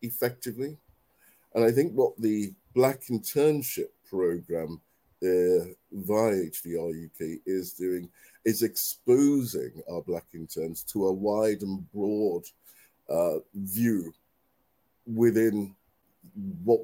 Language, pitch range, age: English, 95-115 Hz, 50-69